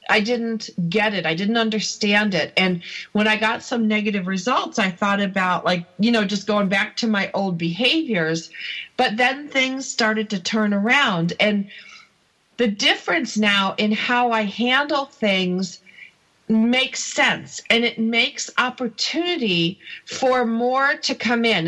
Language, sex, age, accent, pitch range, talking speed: English, female, 40-59, American, 195-245 Hz, 150 wpm